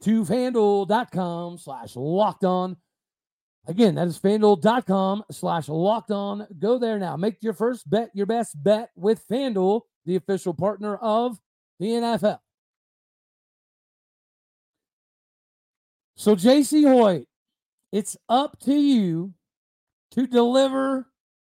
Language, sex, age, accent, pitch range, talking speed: English, male, 40-59, American, 190-235 Hz, 110 wpm